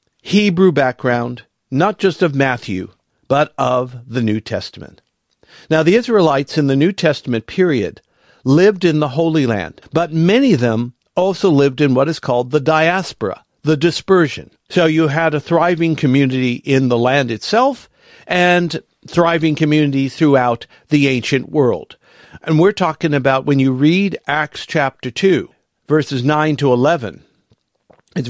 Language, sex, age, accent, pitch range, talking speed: English, male, 50-69, American, 130-170 Hz, 150 wpm